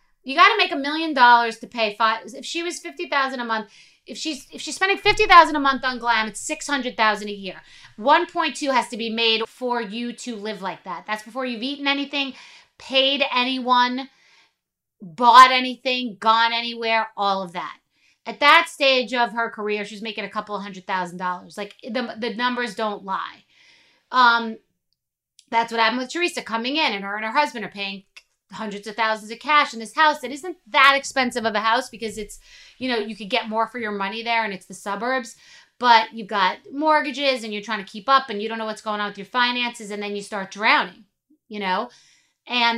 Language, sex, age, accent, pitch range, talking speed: English, female, 30-49, American, 210-265 Hz, 215 wpm